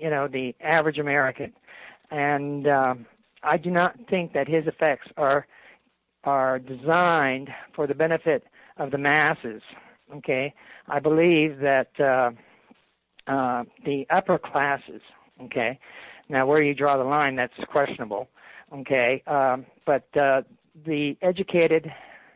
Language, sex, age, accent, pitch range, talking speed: English, male, 50-69, American, 135-170 Hz, 130 wpm